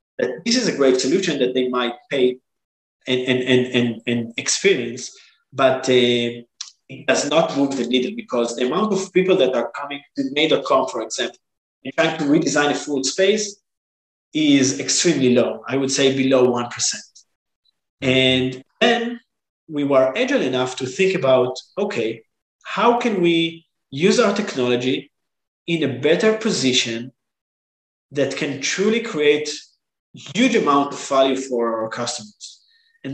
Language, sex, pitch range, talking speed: English, male, 125-175 Hz, 145 wpm